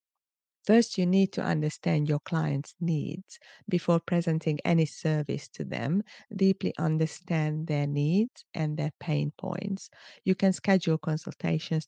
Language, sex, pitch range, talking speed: English, female, 150-180 Hz, 130 wpm